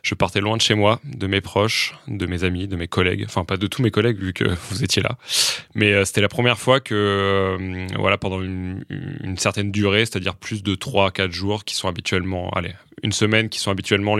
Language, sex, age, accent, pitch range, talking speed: French, male, 20-39, French, 95-110 Hz, 230 wpm